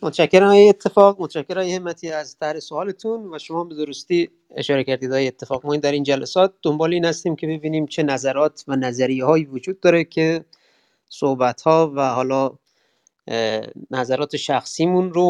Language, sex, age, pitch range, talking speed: Persian, male, 30-49, 130-165 Hz, 160 wpm